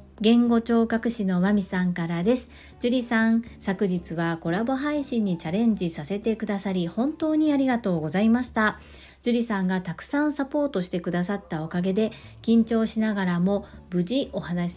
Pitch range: 185-240 Hz